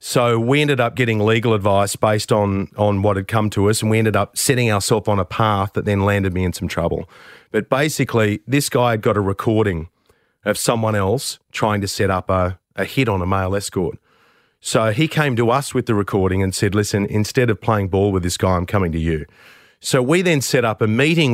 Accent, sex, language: Australian, male, English